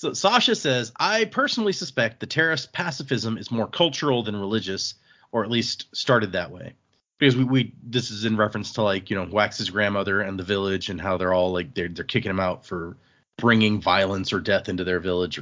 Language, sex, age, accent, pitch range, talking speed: English, male, 30-49, American, 105-135 Hz, 220 wpm